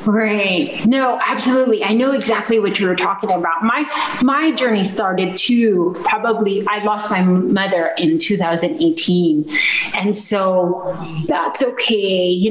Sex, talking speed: female, 135 wpm